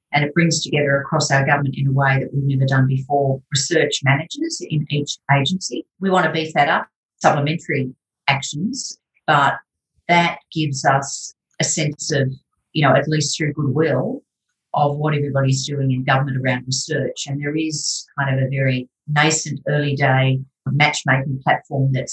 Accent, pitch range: Australian, 135-155 Hz